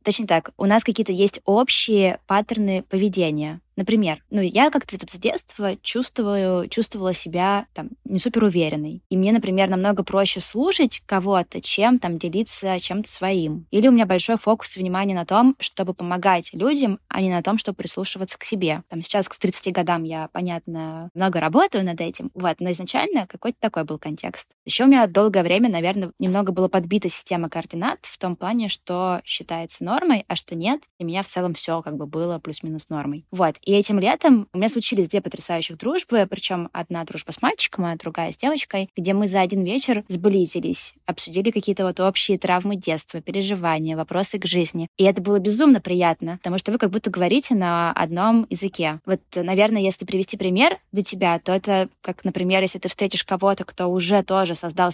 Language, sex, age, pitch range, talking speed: Russian, female, 20-39, 175-205 Hz, 185 wpm